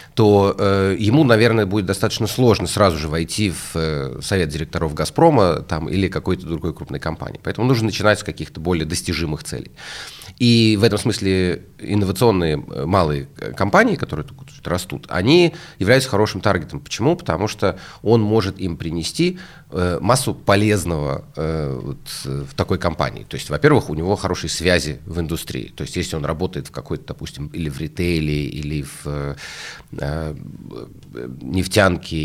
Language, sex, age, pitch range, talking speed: Russian, male, 30-49, 80-105 Hz, 150 wpm